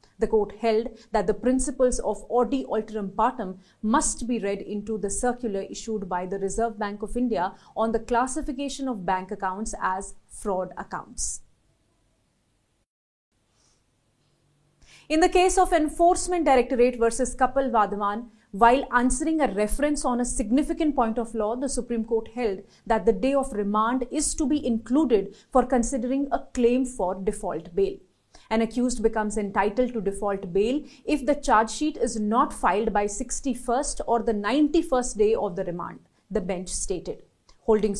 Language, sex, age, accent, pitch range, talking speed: English, female, 30-49, Indian, 205-250 Hz, 155 wpm